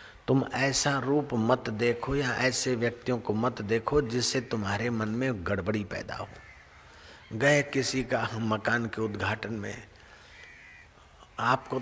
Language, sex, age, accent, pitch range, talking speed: Hindi, male, 50-69, native, 100-120 Hz, 130 wpm